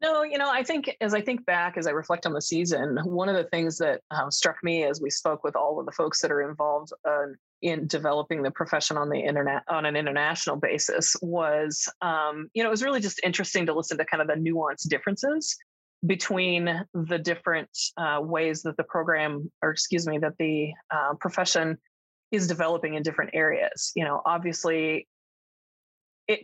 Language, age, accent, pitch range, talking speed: English, 30-49, American, 155-180 Hz, 200 wpm